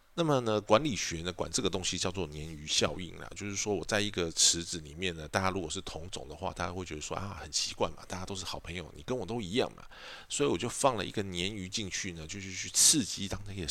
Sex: male